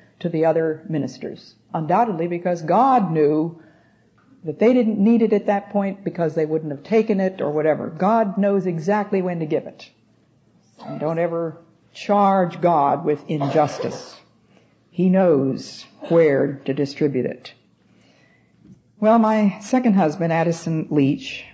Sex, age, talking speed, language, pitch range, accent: female, 50-69, 140 wpm, English, 150-190 Hz, American